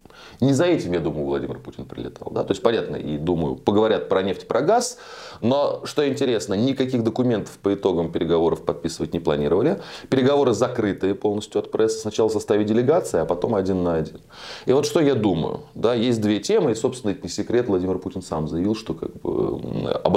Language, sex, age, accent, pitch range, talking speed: Russian, male, 20-39, native, 85-115 Hz, 195 wpm